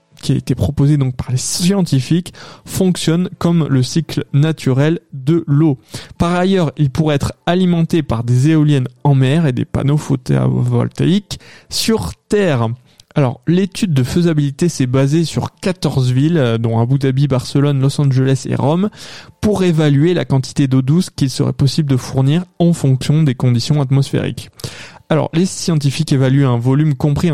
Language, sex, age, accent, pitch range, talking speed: French, male, 20-39, French, 130-165 Hz, 160 wpm